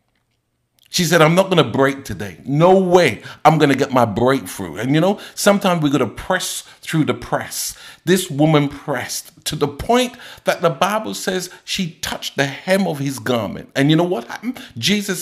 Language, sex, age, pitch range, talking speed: English, male, 50-69, 115-150 Hz, 195 wpm